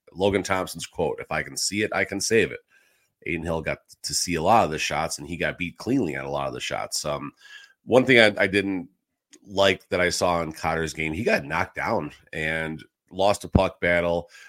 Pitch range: 80-95 Hz